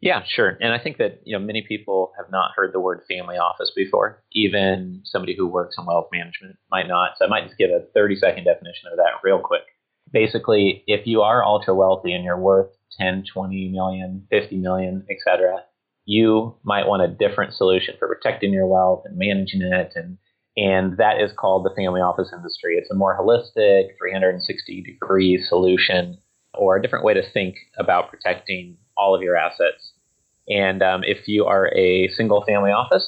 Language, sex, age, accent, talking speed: English, male, 30-49, American, 190 wpm